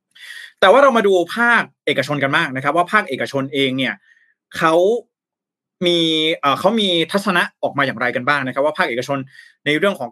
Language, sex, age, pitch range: Thai, male, 20-39, 135-185 Hz